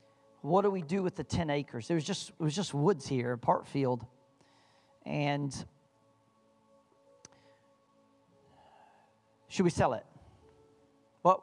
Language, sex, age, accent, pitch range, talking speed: English, male, 40-59, American, 115-175 Hz, 125 wpm